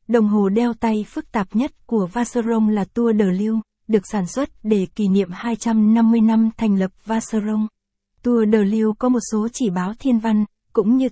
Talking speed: 195 wpm